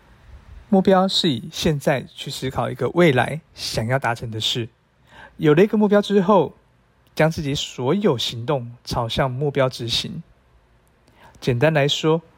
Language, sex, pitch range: Chinese, male, 125-165 Hz